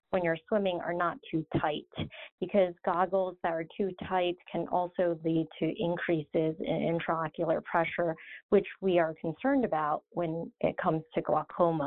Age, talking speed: 40-59, 155 wpm